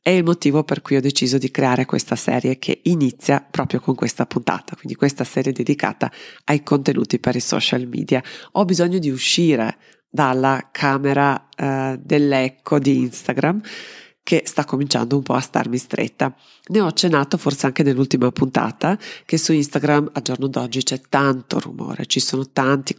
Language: Italian